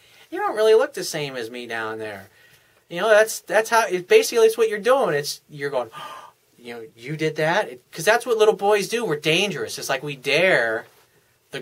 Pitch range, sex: 135-210 Hz, male